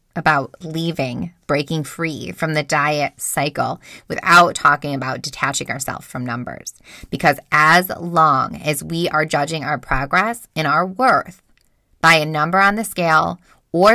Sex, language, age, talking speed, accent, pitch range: female, English, 20-39, 145 wpm, American, 155-220 Hz